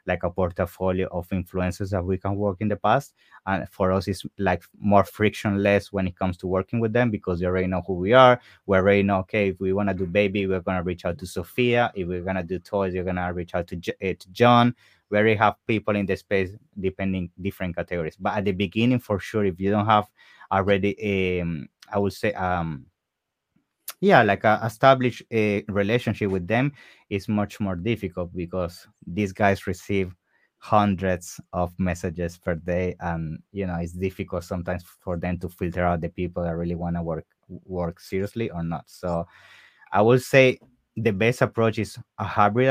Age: 20-39